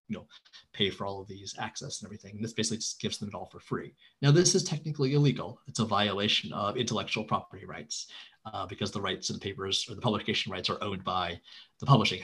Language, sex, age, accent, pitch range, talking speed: English, male, 30-49, American, 105-130 Hz, 220 wpm